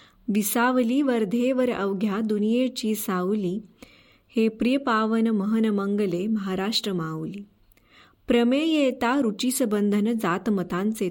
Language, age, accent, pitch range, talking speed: Marathi, 20-39, native, 200-245 Hz, 85 wpm